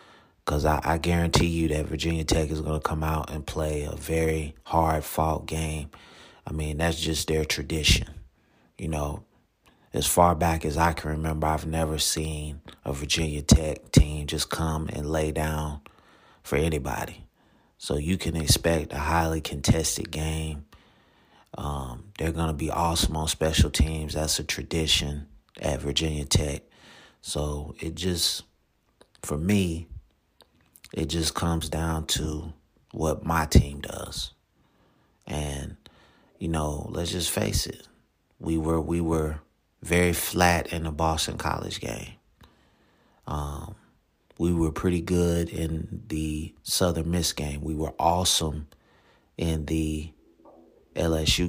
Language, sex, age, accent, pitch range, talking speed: English, male, 30-49, American, 75-85 Hz, 140 wpm